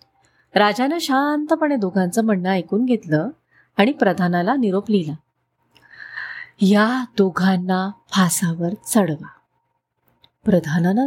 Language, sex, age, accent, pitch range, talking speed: Marathi, female, 30-49, native, 180-250 Hz, 80 wpm